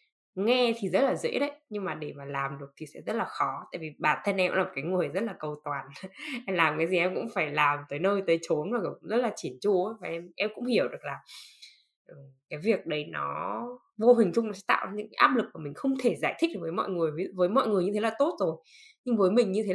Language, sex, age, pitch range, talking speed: Vietnamese, female, 10-29, 165-235 Hz, 285 wpm